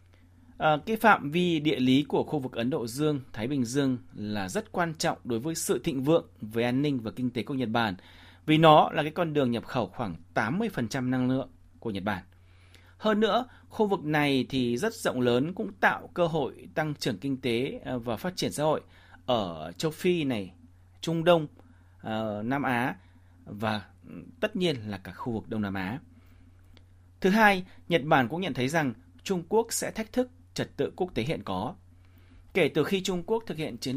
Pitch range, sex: 100-155 Hz, male